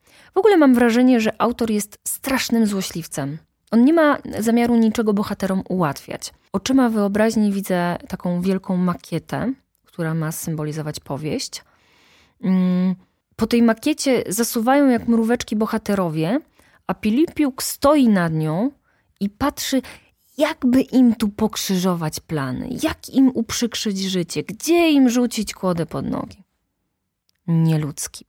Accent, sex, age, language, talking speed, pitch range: native, female, 20-39, Polish, 120 wpm, 170-245 Hz